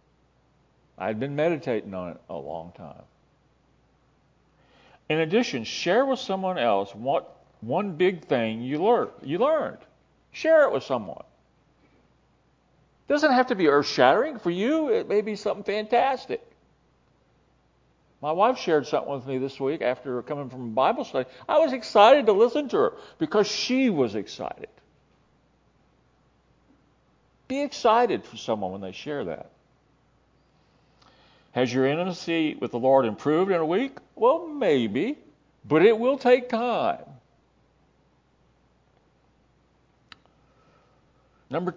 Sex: male